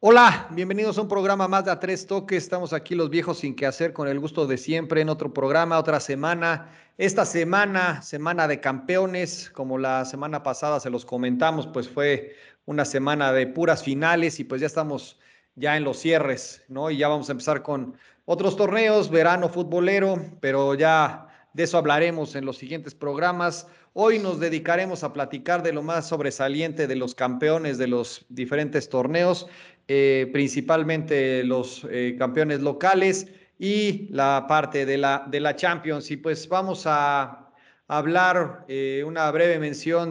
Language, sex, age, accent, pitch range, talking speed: Spanish, male, 40-59, Mexican, 140-175 Hz, 165 wpm